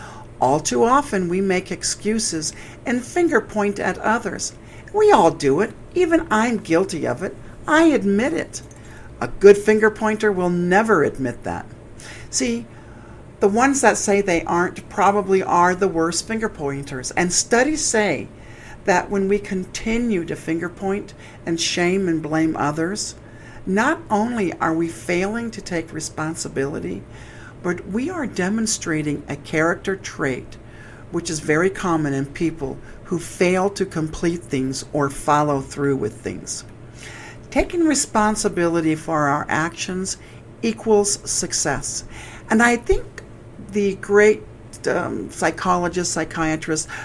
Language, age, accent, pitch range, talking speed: English, 60-79, American, 135-200 Hz, 135 wpm